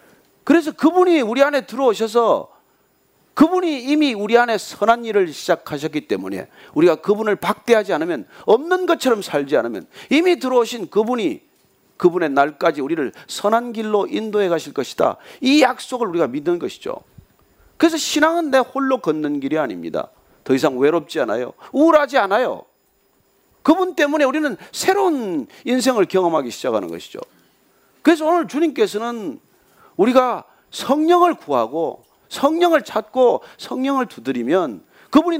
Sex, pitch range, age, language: male, 210-310 Hz, 40-59, Korean